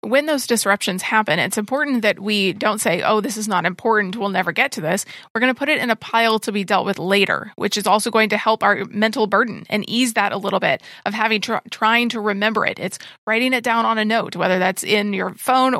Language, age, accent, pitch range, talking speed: English, 30-49, American, 205-235 Hz, 250 wpm